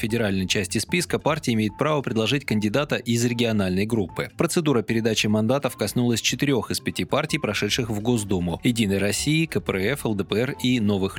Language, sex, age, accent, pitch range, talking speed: Russian, male, 20-39, native, 100-130 Hz, 155 wpm